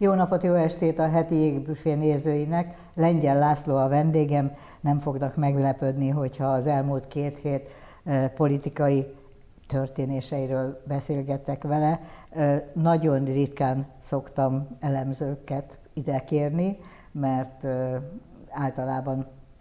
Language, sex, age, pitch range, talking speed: Hungarian, female, 60-79, 135-150 Hz, 100 wpm